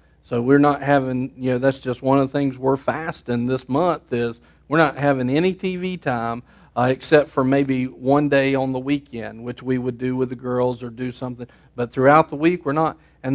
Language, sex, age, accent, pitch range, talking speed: English, male, 50-69, American, 125-155 Hz, 220 wpm